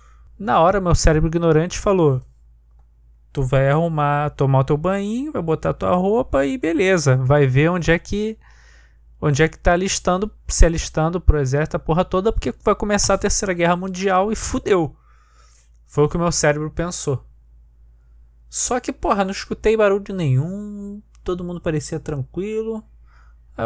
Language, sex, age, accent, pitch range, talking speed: Portuguese, male, 20-39, Brazilian, 125-175 Hz, 160 wpm